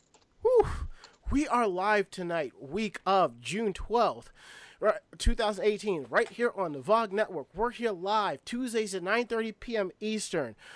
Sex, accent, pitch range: male, American, 180-225 Hz